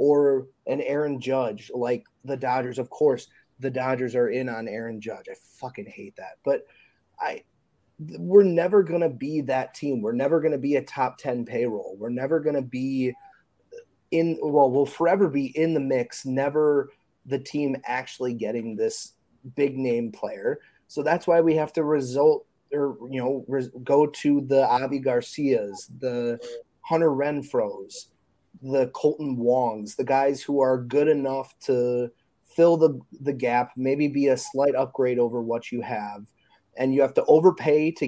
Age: 30-49